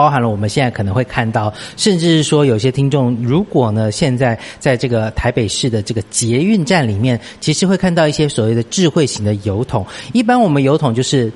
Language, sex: Chinese, male